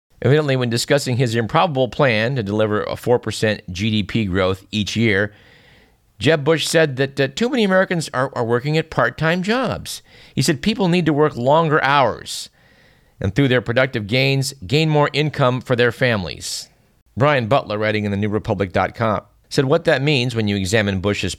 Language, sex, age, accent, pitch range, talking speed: English, male, 50-69, American, 100-135 Hz, 170 wpm